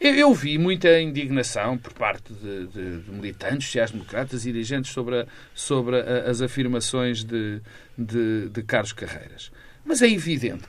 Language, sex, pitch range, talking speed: Portuguese, male, 125-180 Hz, 150 wpm